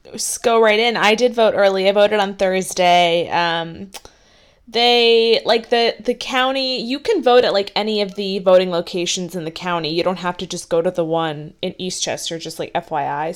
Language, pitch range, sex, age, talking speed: English, 175-235 Hz, female, 20-39, 200 wpm